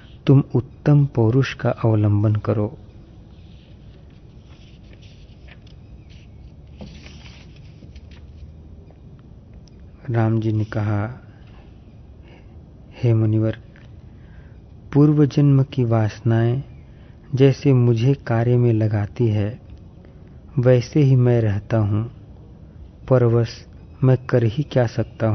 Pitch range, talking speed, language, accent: 105-125 Hz, 80 wpm, Hindi, native